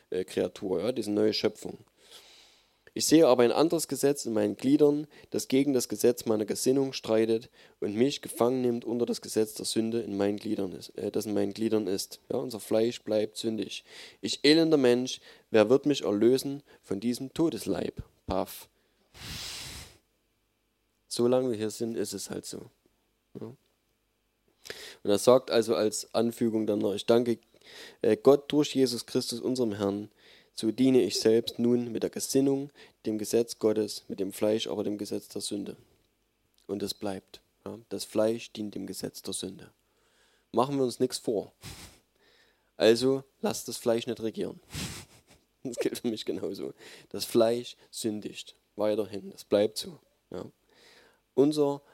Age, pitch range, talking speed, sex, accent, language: 20-39, 110-130 Hz, 155 wpm, male, German, German